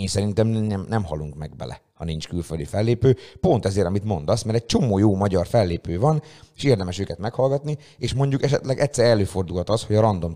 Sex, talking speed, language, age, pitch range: male, 205 wpm, Hungarian, 30-49, 85-110 Hz